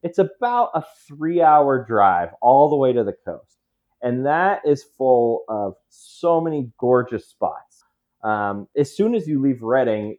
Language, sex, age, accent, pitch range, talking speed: English, male, 20-39, American, 105-135 Hz, 160 wpm